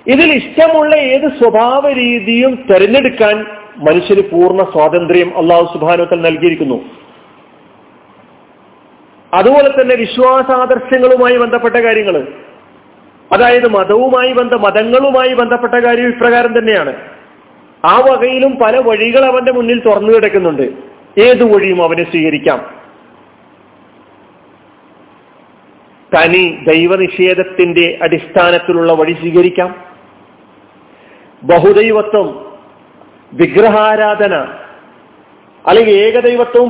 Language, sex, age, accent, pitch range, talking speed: Malayalam, male, 40-59, native, 180-255 Hz, 75 wpm